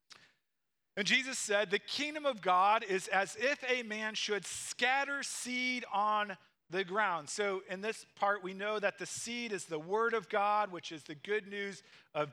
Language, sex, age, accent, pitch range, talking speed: English, male, 40-59, American, 160-215 Hz, 185 wpm